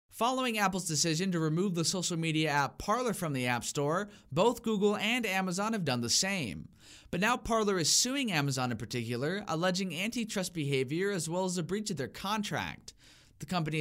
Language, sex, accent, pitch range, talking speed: English, male, American, 145-195 Hz, 185 wpm